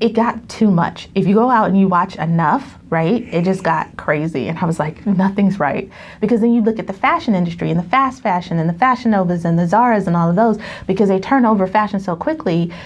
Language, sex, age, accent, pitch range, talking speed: English, female, 30-49, American, 170-230 Hz, 245 wpm